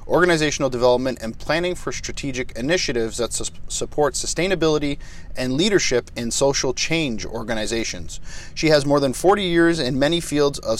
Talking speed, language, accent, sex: 145 wpm, English, American, male